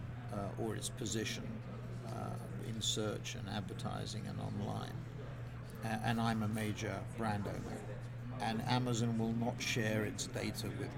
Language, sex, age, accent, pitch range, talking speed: English, male, 50-69, British, 110-120 Hz, 135 wpm